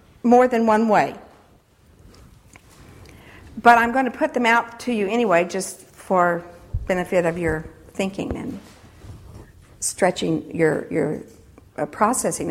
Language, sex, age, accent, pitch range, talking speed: English, female, 60-79, American, 195-265 Hz, 120 wpm